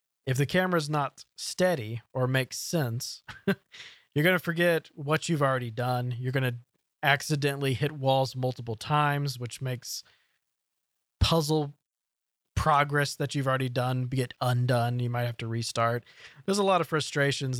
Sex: male